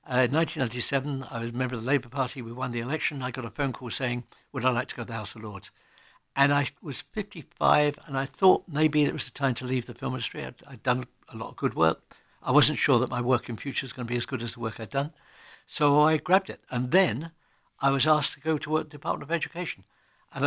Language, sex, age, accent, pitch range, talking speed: English, male, 60-79, British, 120-150 Hz, 275 wpm